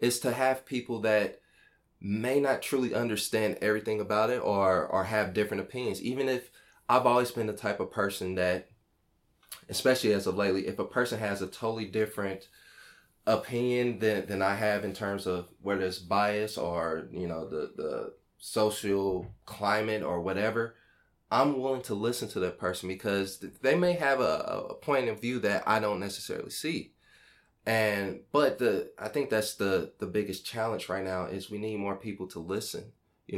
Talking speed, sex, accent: 180 wpm, male, American